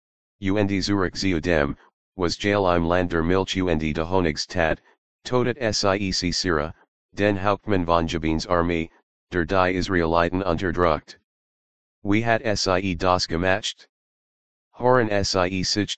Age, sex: 40-59, male